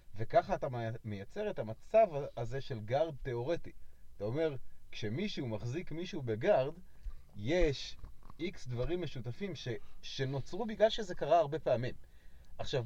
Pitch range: 110-150 Hz